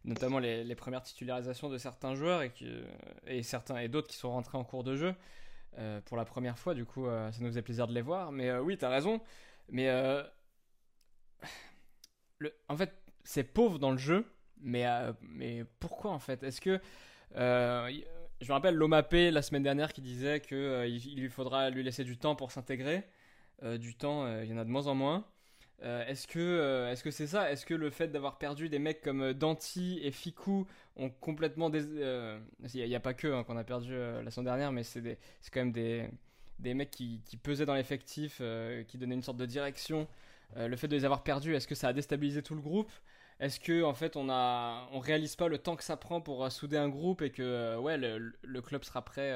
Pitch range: 125-155 Hz